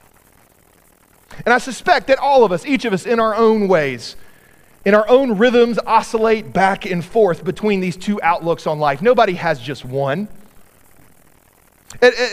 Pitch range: 190-255 Hz